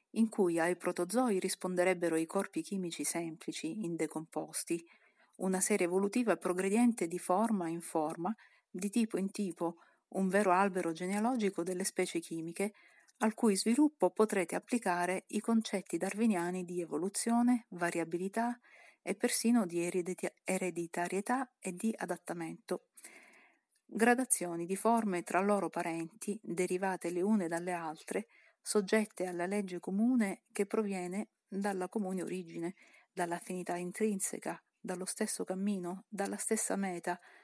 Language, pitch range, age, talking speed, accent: Italian, 175-215 Hz, 50-69, 120 wpm, native